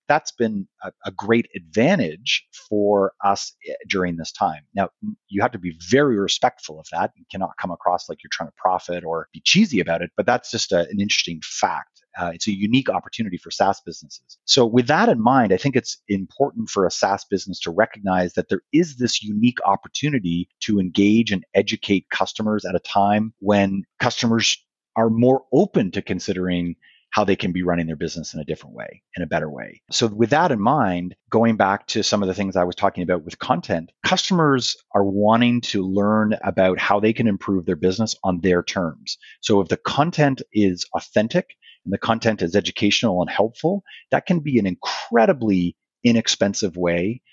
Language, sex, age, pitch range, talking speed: English, male, 30-49, 90-115 Hz, 195 wpm